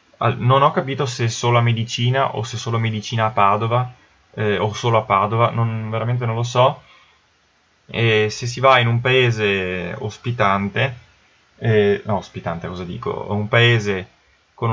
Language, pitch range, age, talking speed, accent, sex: Italian, 95-115 Hz, 20-39, 165 wpm, native, male